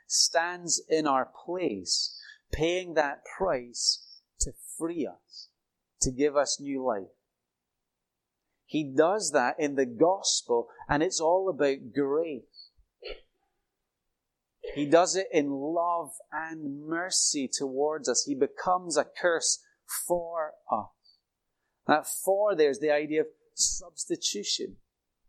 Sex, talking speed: male, 115 wpm